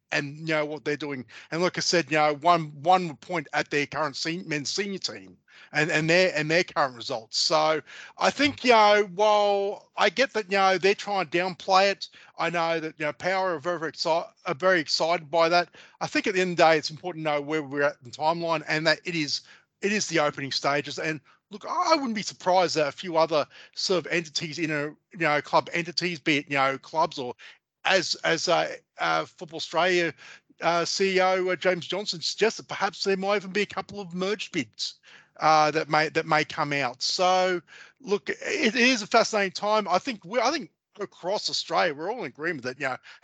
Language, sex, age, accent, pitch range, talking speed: English, male, 30-49, Australian, 150-185 Hz, 225 wpm